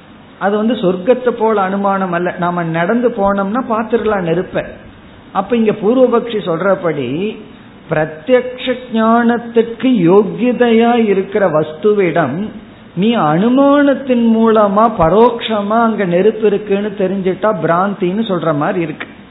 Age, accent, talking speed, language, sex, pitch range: 50-69, native, 95 wpm, Tamil, male, 170-225 Hz